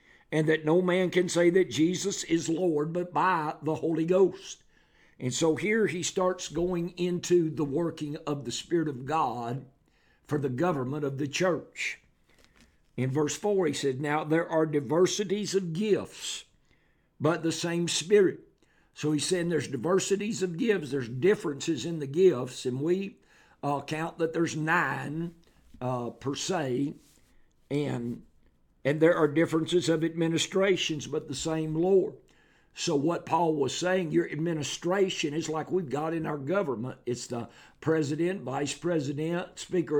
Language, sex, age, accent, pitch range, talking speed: English, male, 60-79, American, 145-175 Hz, 155 wpm